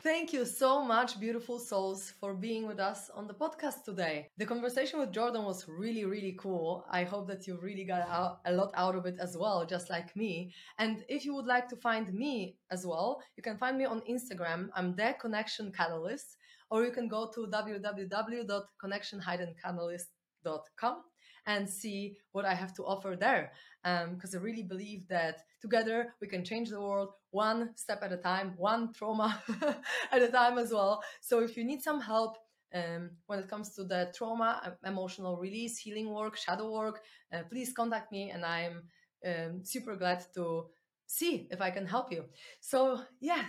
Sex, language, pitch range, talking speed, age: female, English, 180-230 Hz, 185 wpm, 20-39